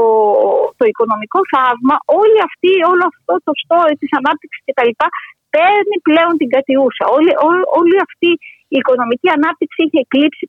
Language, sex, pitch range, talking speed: Greek, female, 260-375 Hz, 135 wpm